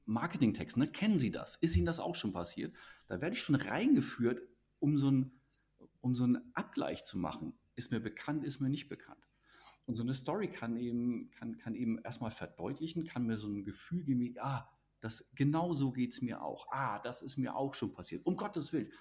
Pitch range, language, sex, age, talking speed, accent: 105-130 Hz, German, male, 40-59, 215 wpm, German